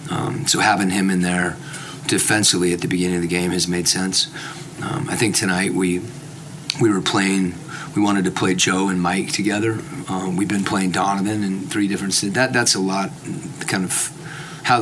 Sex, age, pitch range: male, 30-49, 90-100 Hz